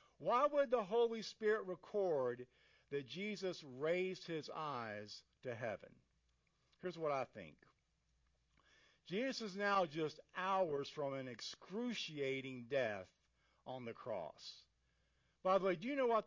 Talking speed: 135 wpm